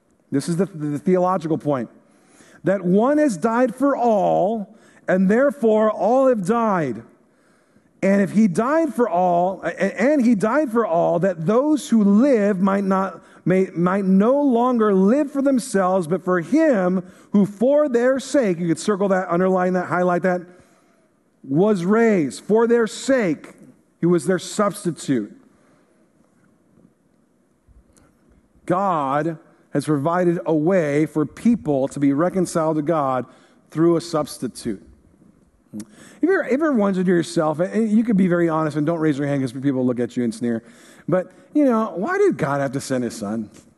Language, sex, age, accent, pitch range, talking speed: English, male, 50-69, American, 160-245 Hz, 160 wpm